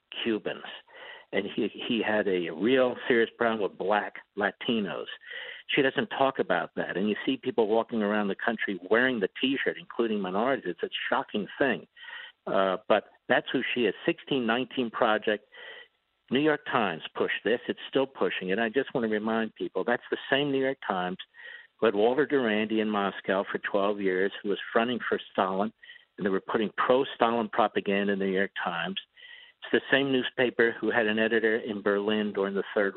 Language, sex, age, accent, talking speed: English, male, 60-79, American, 185 wpm